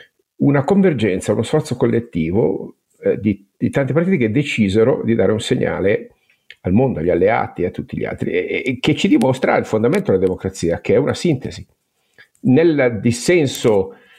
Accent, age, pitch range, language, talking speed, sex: native, 50-69, 95-135 Hz, Italian, 170 wpm, male